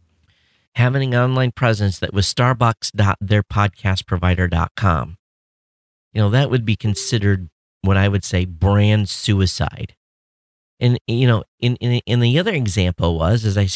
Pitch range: 95-120 Hz